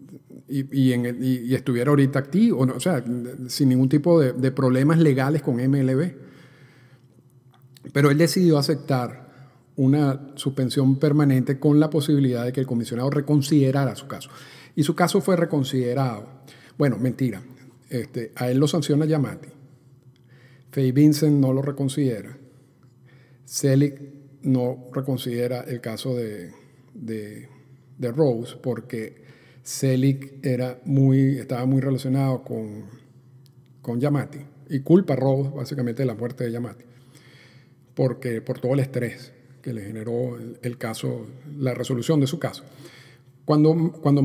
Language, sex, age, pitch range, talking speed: Spanish, male, 50-69, 125-140 Hz, 135 wpm